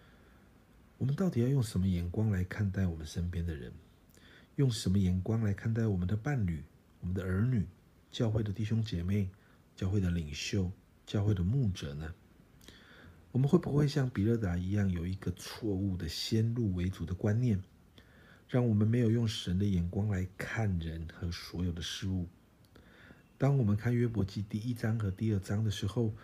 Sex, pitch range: male, 85-110 Hz